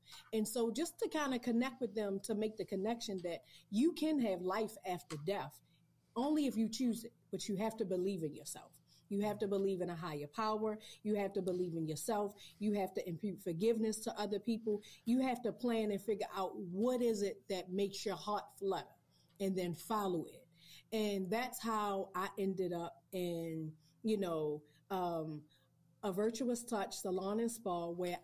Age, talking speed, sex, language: 40-59, 190 wpm, female, English